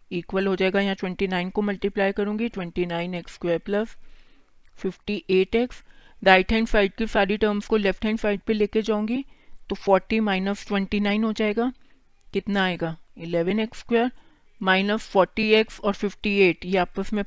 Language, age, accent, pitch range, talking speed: Hindi, 40-59, native, 185-220 Hz, 130 wpm